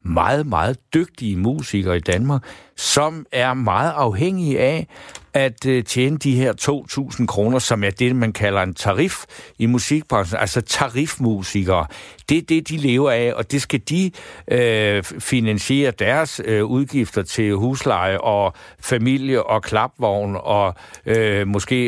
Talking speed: 135 wpm